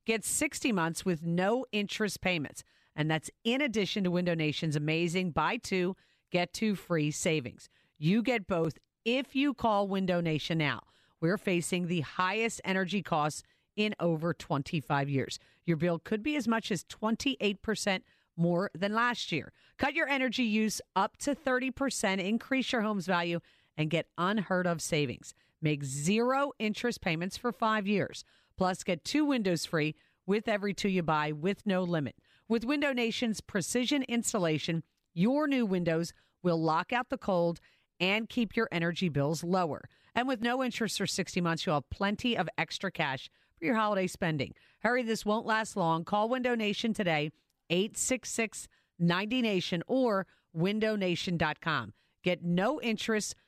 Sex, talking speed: female, 155 wpm